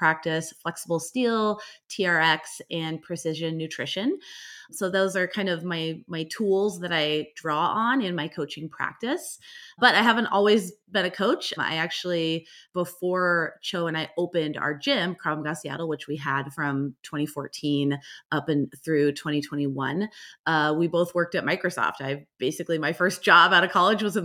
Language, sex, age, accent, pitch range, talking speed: English, female, 30-49, American, 150-180 Hz, 165 wpm